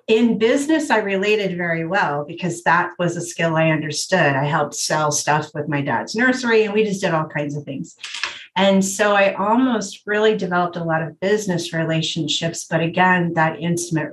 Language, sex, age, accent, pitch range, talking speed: English, female, 40-59, American, 160-195 Hz, 185 wpm